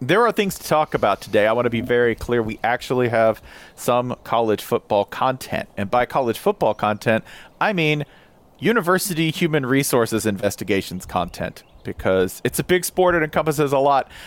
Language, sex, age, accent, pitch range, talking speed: English, male, 40-59, American, 100-150 Hz, 170 wpm